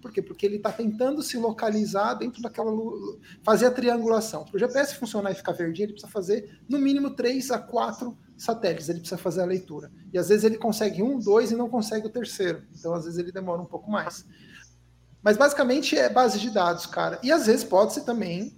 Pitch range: 185-240 Hz